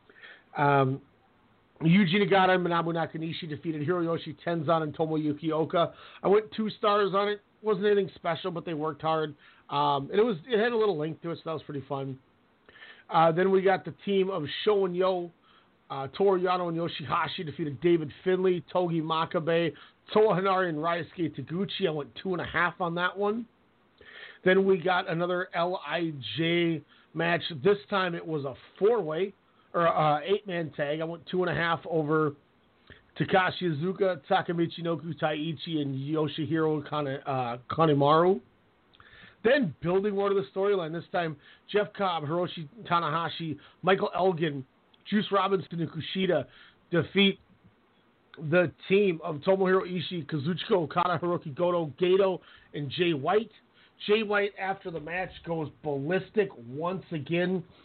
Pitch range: 155-190 Hz